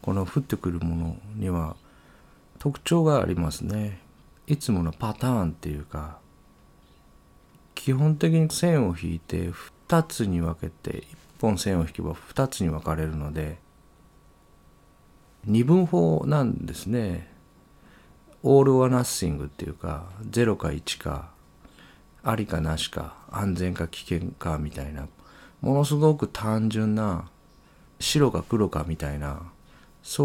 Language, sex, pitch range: Japanese, male, 80-115 Hz